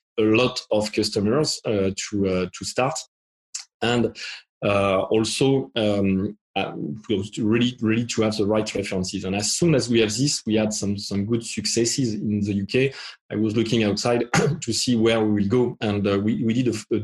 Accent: French